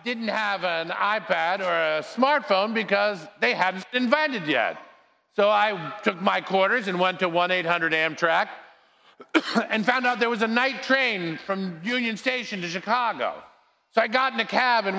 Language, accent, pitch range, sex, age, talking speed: English, American, 190-250 Hz, male, 50-69, 175 wpm